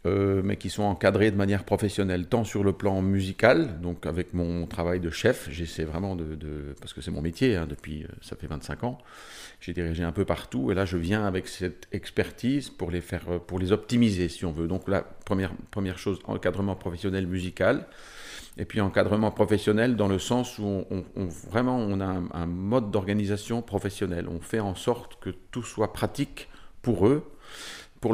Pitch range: 90-110 Hz